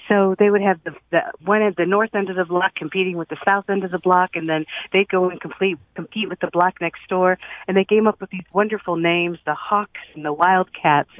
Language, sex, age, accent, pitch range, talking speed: English, female, 50-69, American, 165-205 Hz, 250 wpm